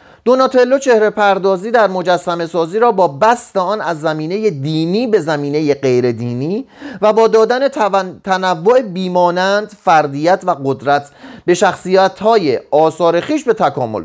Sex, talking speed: male, 130 wpm